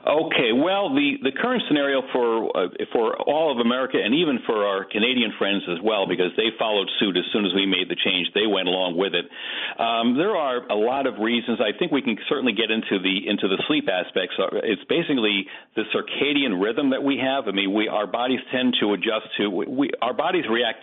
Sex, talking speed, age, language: male, 225 wpm, 50-69, English